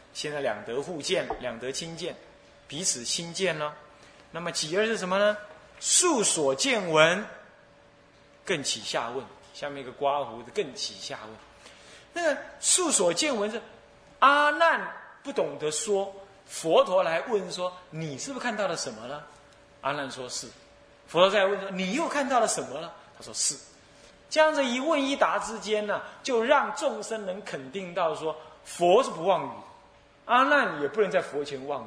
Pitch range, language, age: 145-200 Hz, Chinese, 30-49